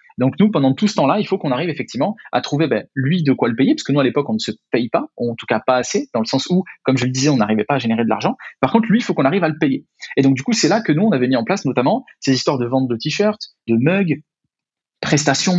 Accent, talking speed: French, 315 wpm